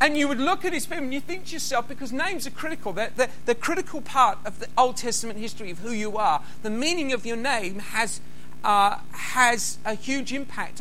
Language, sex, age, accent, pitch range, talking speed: English, male, 50-69, British, 210-275 Hz, 230 wpm